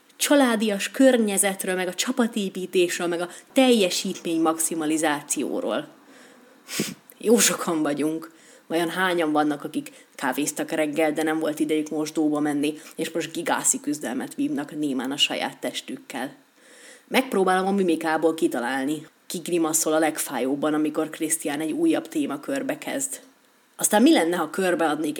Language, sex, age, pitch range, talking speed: Hungarian, female, 30-49, 155-265 Hz, 130 wpm